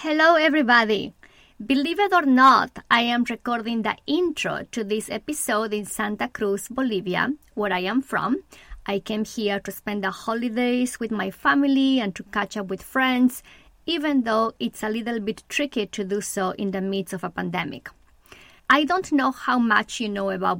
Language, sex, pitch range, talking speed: English, female, 205-265 Hz, 180 wpm